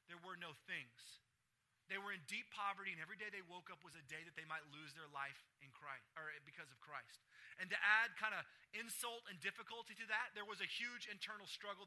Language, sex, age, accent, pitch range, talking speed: English, male, 30-49, American, 155-215 Hz, 235 wpm